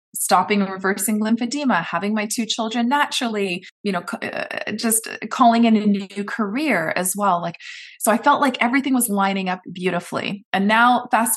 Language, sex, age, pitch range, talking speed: English, female, 20-39, 190-235 Hz, 180 wpm